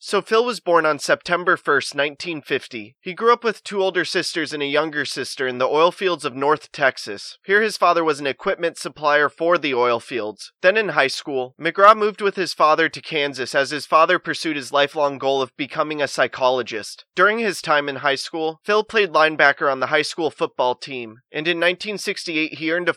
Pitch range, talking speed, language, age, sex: 135-175 Hz, 210 wpm, English, 20-39, male